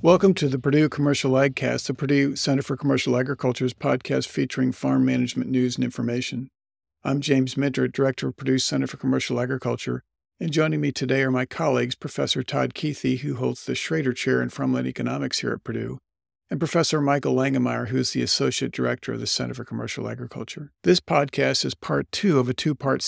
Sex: male